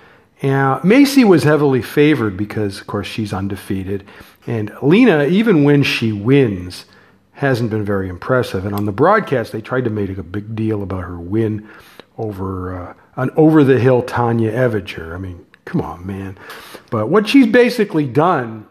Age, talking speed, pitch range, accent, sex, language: 50-69, 160 wpm, 105-150 Hz, American, male, English